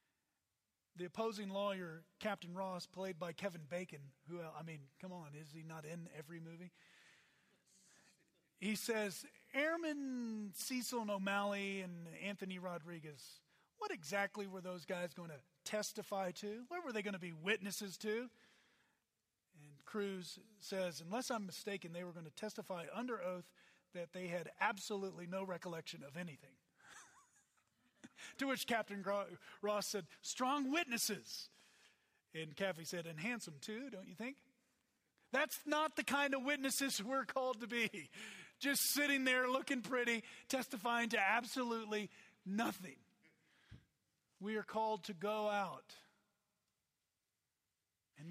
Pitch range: 170-225 Hz